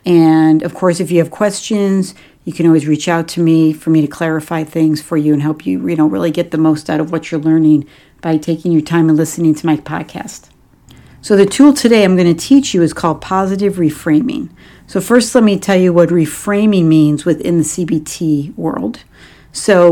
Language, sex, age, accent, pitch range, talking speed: English, female, 50-69, American, 155-190 Hz, 215 wpm